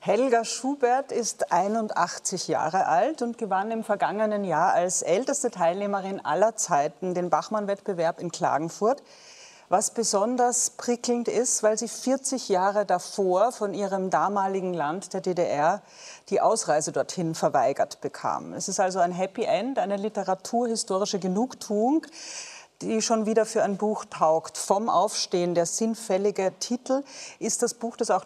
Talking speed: 140 wpm